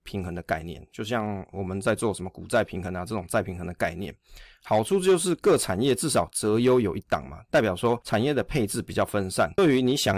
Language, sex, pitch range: Chinese, male, 100-130 Hz